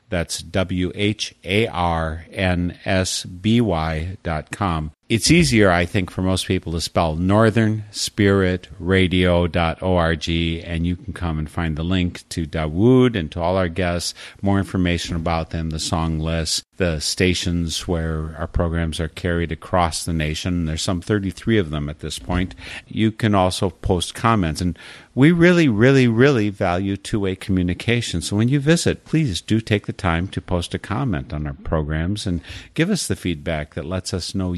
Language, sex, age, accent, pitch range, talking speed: English, male, 50-69, American, 85-105 Hz, 160 wpm